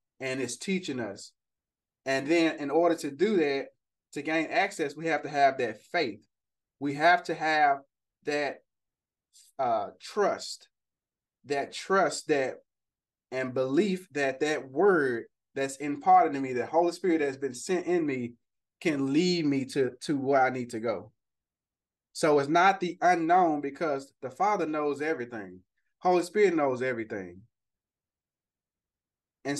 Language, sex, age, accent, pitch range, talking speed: English, male, 20-39, American, 130-170 Hz, 145 wpm